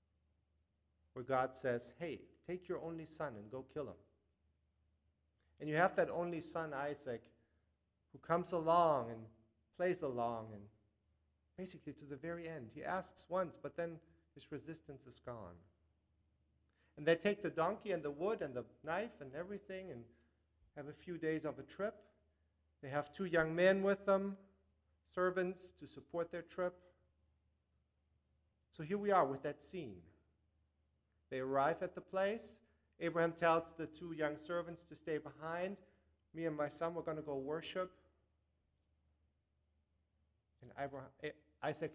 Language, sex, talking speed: English, male, 150 wpm